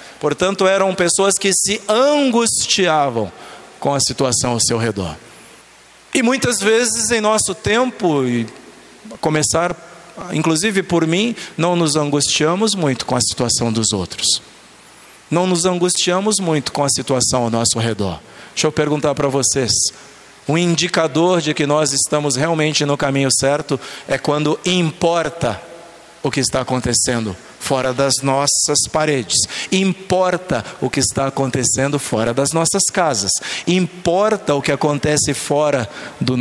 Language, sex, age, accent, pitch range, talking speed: Portuguese, male, 40-59, Brazilian, 135-190 Hz, 135 wpm